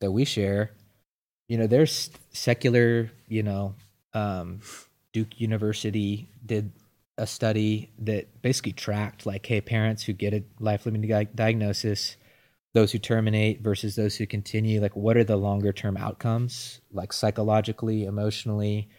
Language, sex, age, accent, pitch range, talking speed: English, male, 20-39, American, 100-115 Hz, 135 wpm